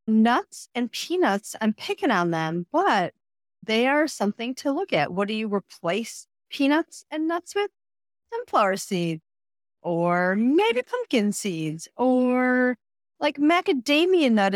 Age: 40-59